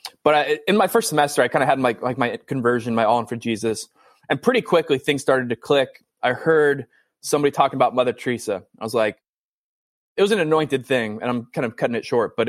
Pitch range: 125-160 Hz